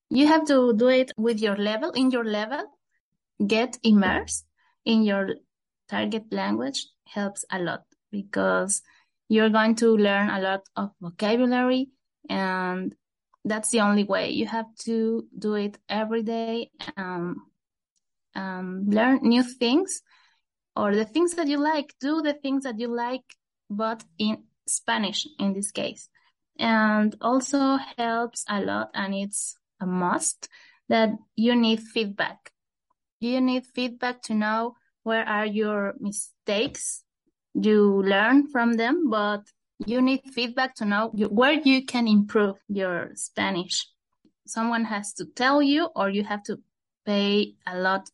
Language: English